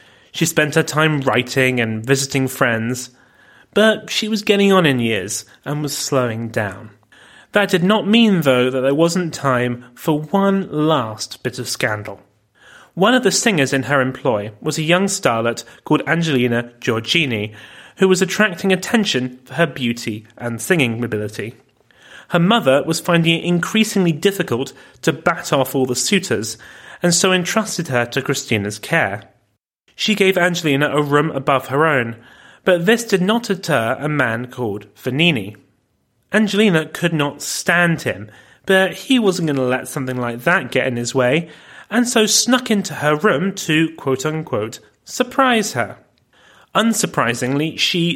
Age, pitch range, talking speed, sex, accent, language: 30-49, 125-185 Hz, 155 wpm, male, British, English